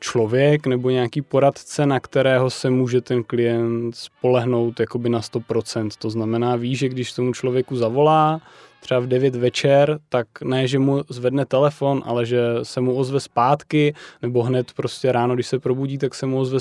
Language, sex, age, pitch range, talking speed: Czech, male, 20-39, 125-140 Hz, 175 wpm